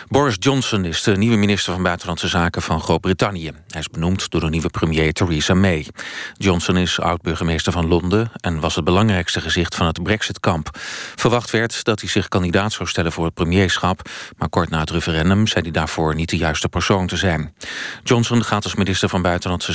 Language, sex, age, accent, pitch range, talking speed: Dutch, male, 40-59, Dutch, 80-105 Hz, 195 wpm